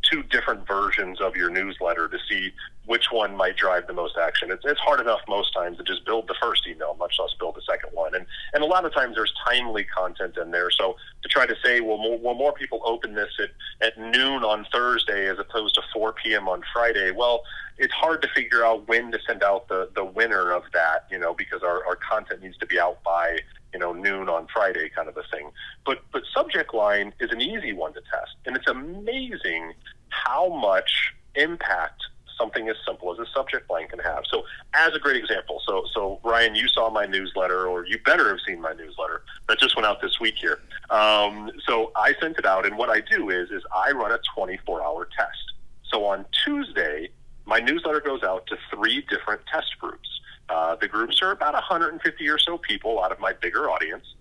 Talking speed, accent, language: 215 wpm, American, English